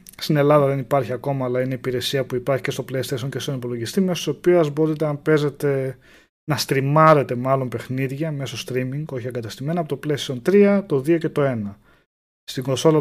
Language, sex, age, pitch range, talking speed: Greek, male, 20-39, 120-155 Hz, 190 wpm